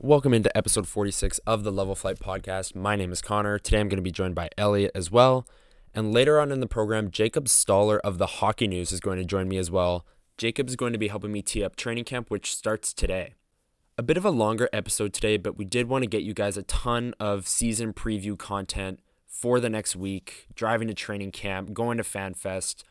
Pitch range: 95-115 Hz